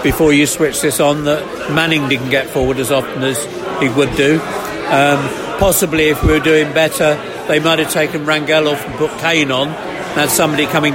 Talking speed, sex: 205 wpm, male